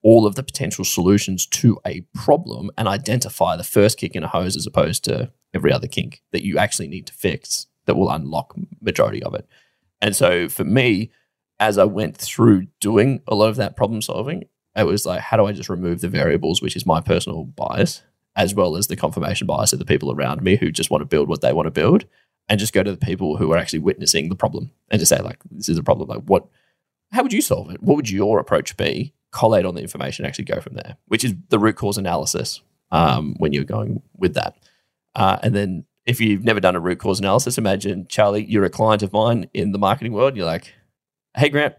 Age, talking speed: 10-29, 235 wpm